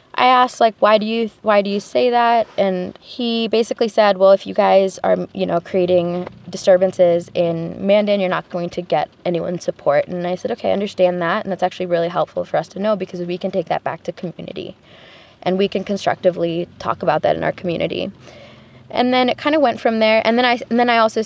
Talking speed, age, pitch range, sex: 230 wpm, 20-39, 175-215 Hz, female